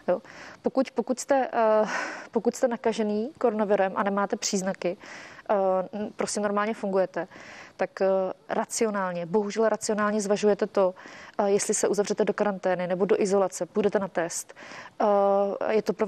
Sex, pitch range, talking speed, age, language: female, 195-220 Hz, 125 wpm, 30-49, Czech